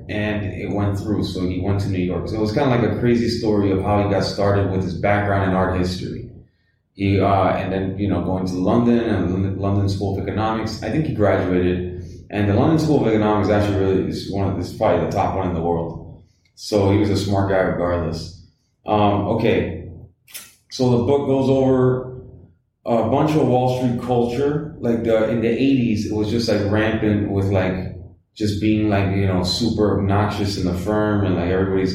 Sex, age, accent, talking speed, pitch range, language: male, 20-39, American, 210 wpm, 95-110 Hz, English